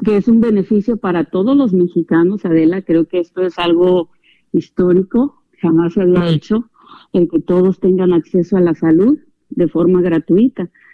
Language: Spanish